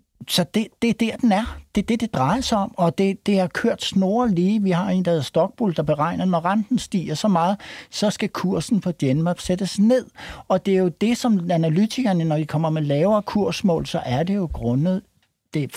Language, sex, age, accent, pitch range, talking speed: Danish, male, 60-79, native, 125-175 Hz, 230 wpm